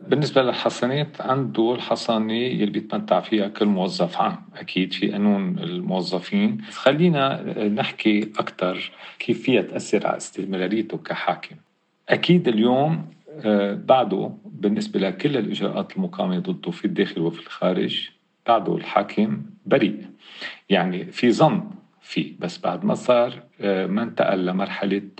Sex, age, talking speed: male, 40-59, 115 wpm